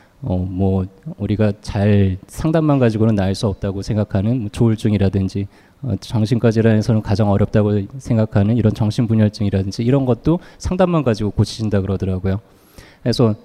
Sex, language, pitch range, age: male, Korean, 100-125 Hz, 20-39